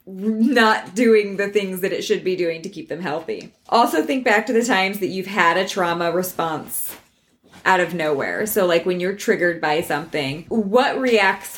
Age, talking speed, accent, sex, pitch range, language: 20-39, 190 wpm, American, female, 180-220 Hz, English